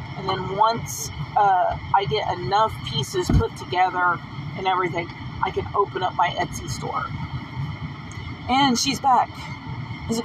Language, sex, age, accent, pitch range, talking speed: English, female, 40-59, American, 125-185 Hz, 140 wpm